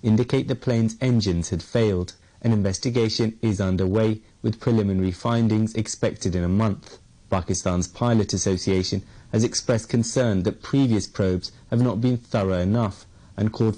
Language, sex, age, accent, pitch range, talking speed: English, male, 30-49, British, 110-170 Hz, 145 wpm